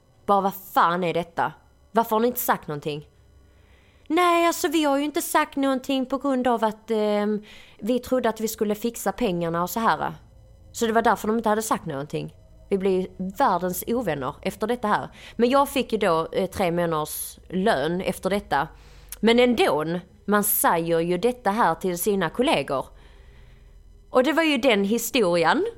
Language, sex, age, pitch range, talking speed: Swedish, female, 30-49, 160-235 Hz, 180 wpm